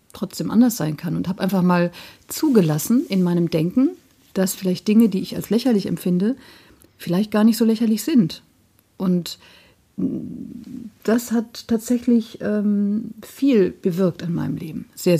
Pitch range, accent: 175-210 Hz, German